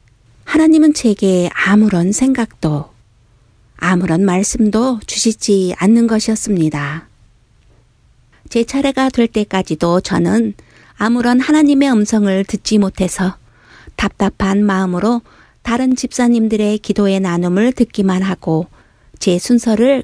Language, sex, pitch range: Korean, female, 170-235 Hz